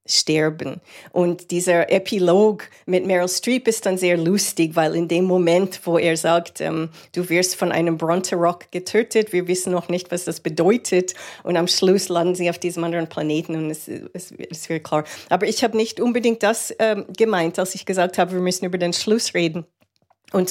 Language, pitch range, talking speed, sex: German, 165-195 Hz, 195 wpm, female